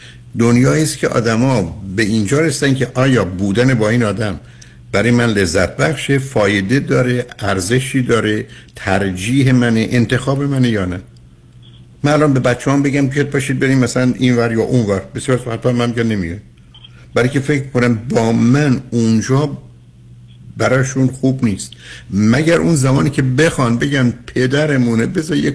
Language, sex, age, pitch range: Persian, male, 60-79, 110-140 Hz